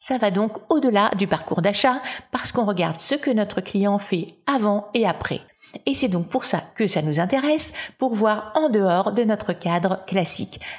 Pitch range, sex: 175-250 Hz, female